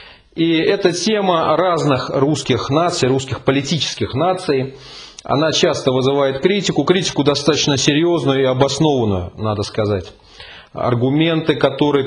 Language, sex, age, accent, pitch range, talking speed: Russian, male, 30-49, native, 115-145 Hz, 110 wpm